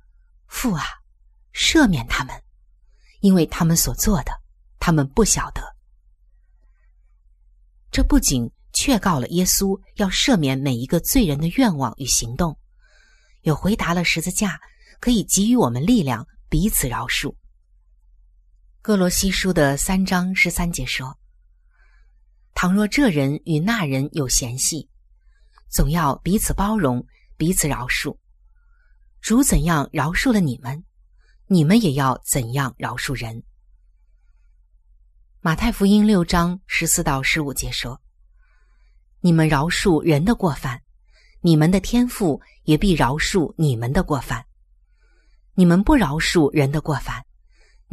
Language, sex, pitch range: Chinese, female, 115-185 Hz